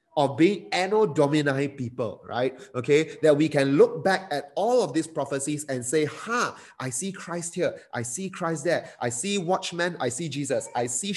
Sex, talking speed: male, 200 wpm